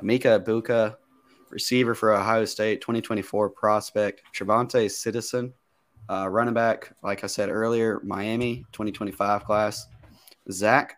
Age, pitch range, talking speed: 20-39, 105-120 Hz, 115 wpm